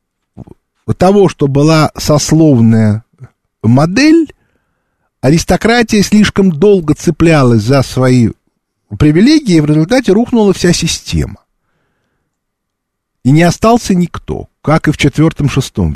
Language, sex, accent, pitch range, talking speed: Russian, male, native, 125-190 Hz, 100 wpm